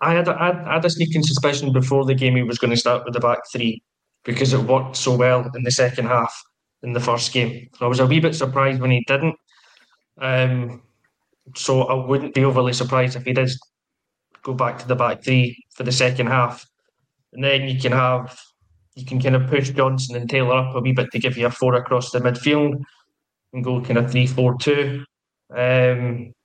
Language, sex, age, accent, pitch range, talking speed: English, male, 20-39, British, 125-135 Hz, 220 wpm